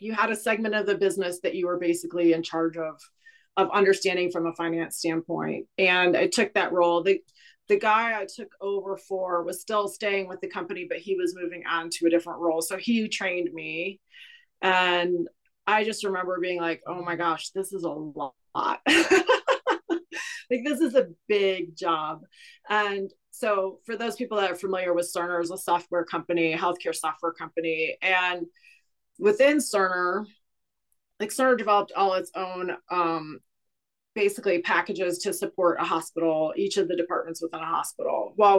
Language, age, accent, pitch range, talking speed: English, 30-49, American, 170-210 Hz, 170 wpm